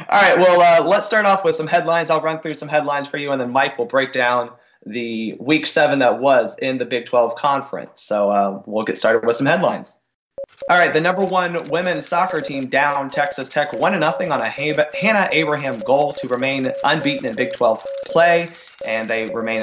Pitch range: 125-205 Hz